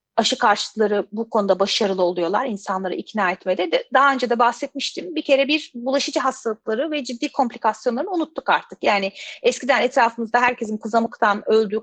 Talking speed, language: 145 wpm, Turkish